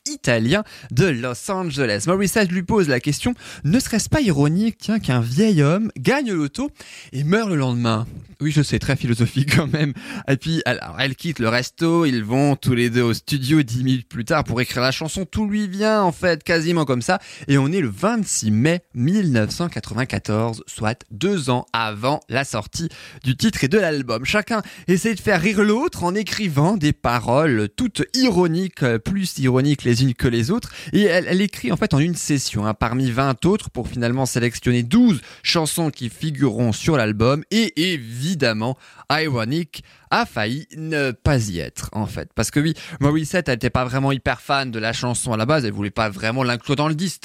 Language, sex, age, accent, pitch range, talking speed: French, male, 20-39, French, 120-175 Hz, 195 wpm